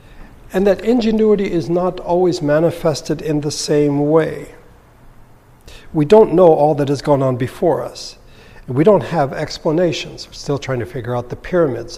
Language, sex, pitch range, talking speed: English, male, 130-160 Hz, 170 wpm